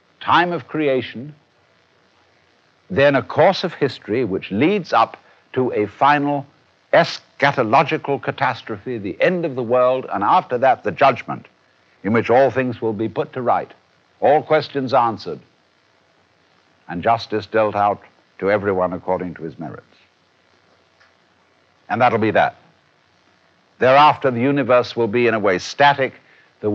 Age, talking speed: 60-79, 140 wpm